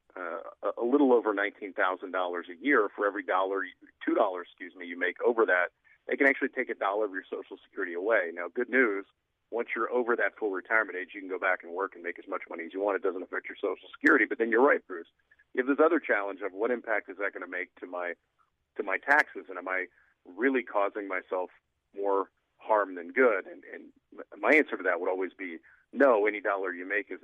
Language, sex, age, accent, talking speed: English, male, 40-59, American, 230 wpm